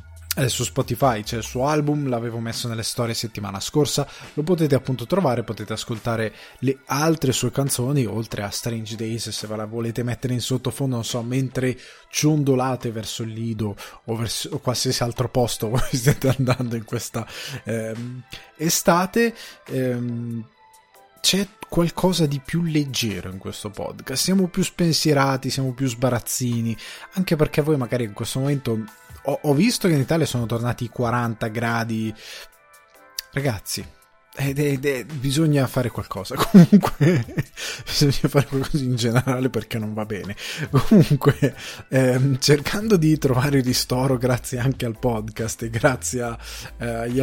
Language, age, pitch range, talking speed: Italian, 20-39, 115-140 Hz, 145 wpm